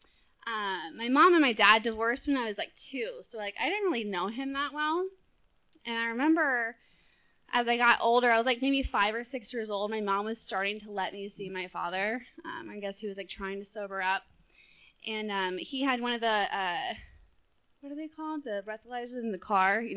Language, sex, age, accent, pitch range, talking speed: English, female, 20-39, American, 215-280 Hz, 225 wpm